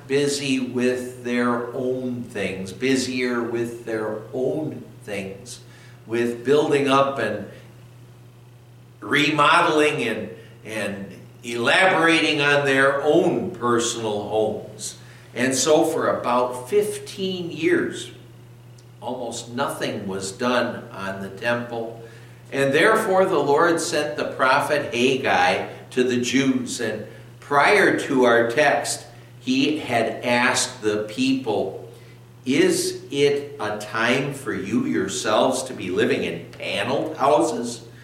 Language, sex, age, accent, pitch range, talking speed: English, male, 60-79, American, 115-140 Hz, 110 wpm